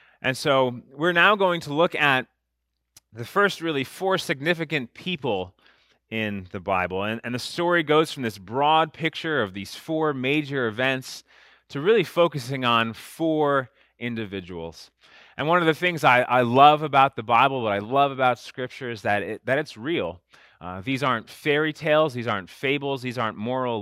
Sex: male